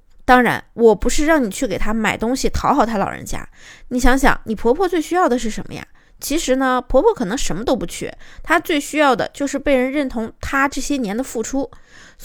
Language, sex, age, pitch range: Chinese, female, 20-39, 210-265 Hz